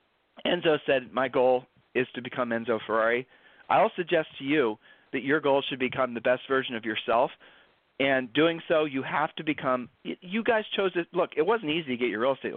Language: English